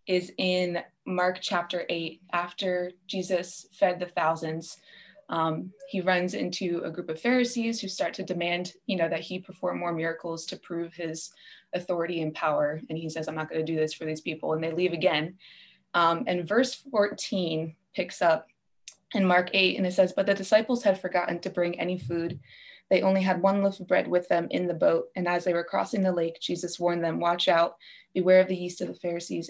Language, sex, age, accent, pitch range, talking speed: English, female, 20-39, American, 170-190 Hz, 210 wpm